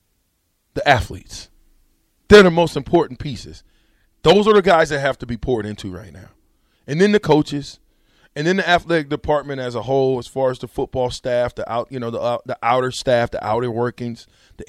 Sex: male